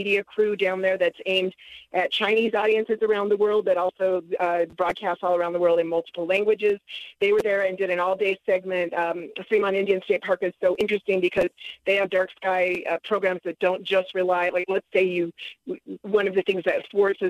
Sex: female